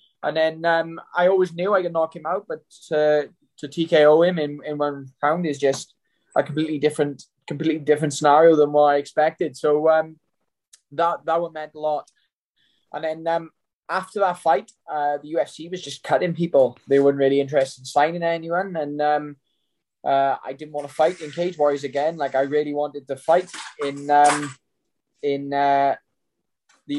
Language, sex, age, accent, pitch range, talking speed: English, male, 20-39, British, 145-170 Hz, 185 wpm